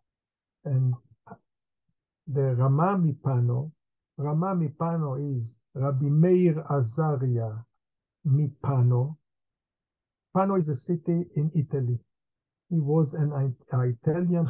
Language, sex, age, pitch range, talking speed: English, male, 60-79, 140-170 Hz, 85 wpm